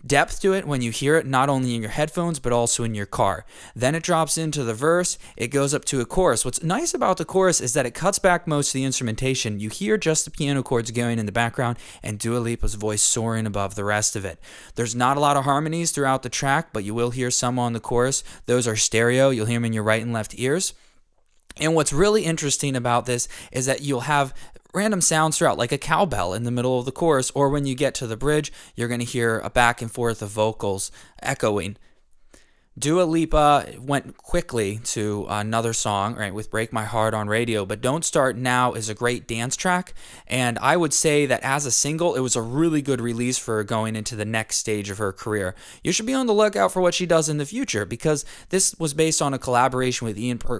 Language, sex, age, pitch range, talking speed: English, male, 20-39, 110-150 Hz, 235 wpm